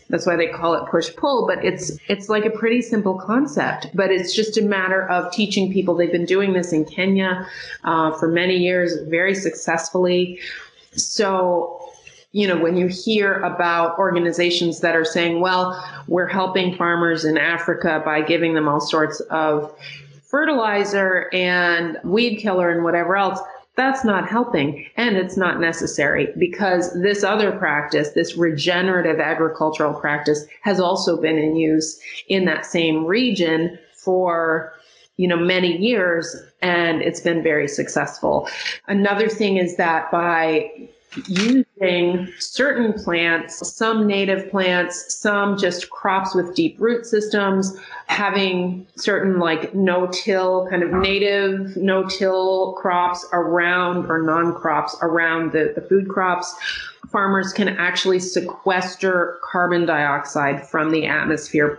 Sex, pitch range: female, 170-195 Hz